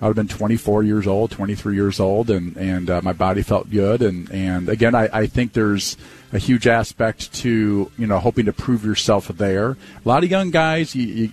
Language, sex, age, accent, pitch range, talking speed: English, male, 40-59, American, 100-120 Hz, 215 wpm